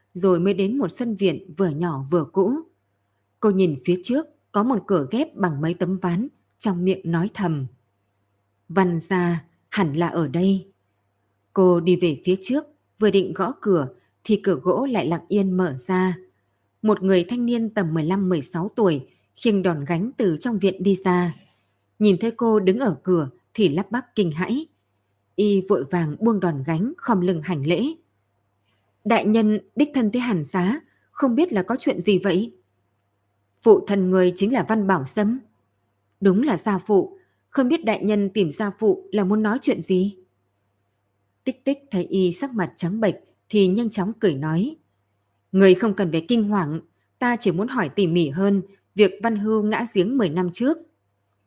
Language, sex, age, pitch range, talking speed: Vietnamese, female, 20-39, 160-210 Hz, 185 wpm